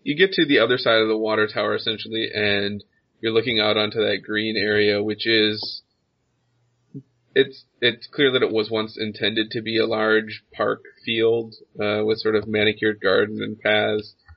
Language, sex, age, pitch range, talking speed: English, male, 30-49, 105-120 Hz, 180 wpm